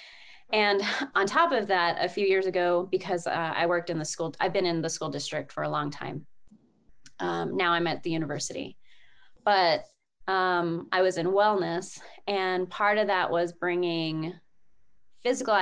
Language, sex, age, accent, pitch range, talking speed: English, female, 20-39, American, 170-195 Hz, 175 wpm